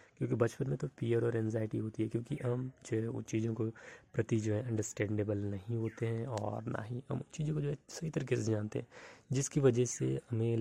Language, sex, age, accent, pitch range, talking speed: Hindi, male, 20-39, native, 105-125 Hz, 230 wpm